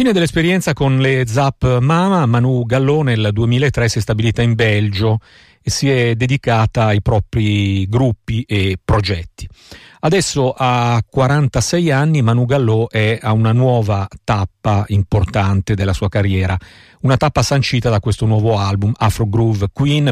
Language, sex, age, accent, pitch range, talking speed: Italian, male, 50-69, native, 105-130 Hz, 145 wpm